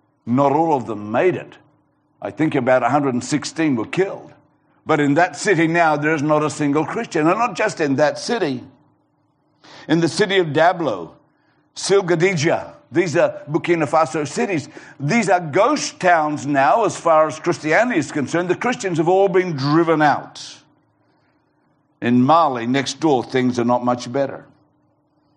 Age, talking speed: 60-79, 155 wpm